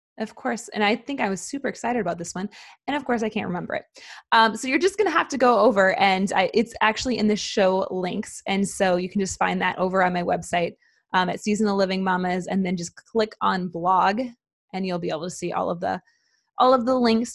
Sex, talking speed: female, 250 wpm